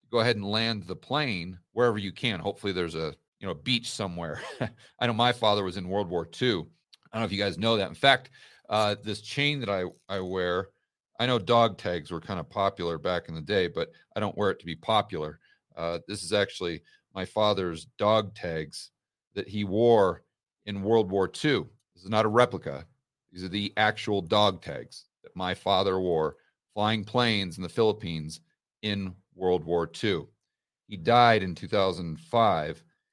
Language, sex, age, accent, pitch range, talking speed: English, male, 40-59, American, 95-115 Hz, 195 wpm